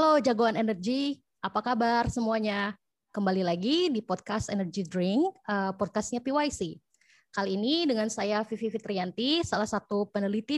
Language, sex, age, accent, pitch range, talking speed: Indonesian, female, 20-39, native, 195-245 Hz, 130 wpm